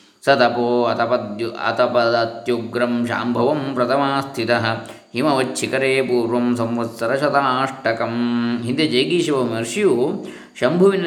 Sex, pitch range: male, 115-135 Hz